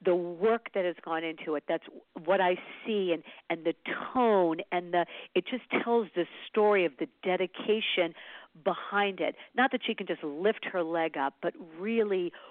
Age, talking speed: 50-69, 180 wpm